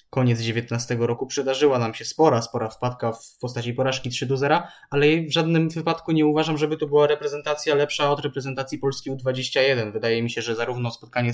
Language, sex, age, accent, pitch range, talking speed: Polish, male, 20-39, native, 120-145 Hz, 190 wpm